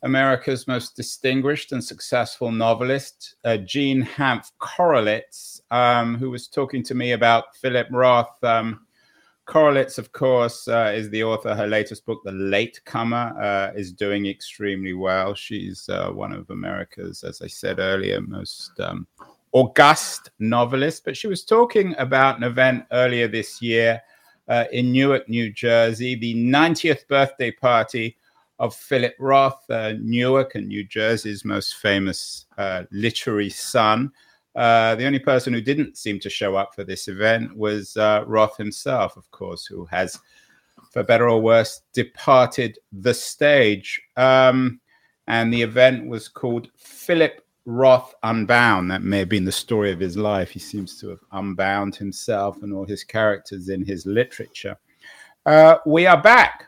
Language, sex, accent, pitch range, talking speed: English, male, British, 105-130 Hz, 155 wpm